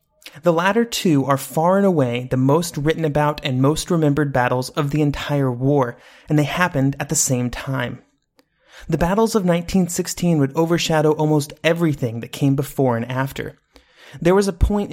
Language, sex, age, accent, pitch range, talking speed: English, male, 30-49, American, 135-170 Hz, 175 wpm